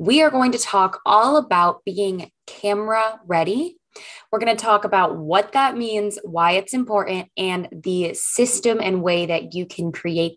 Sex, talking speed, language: female, 175 wpm, English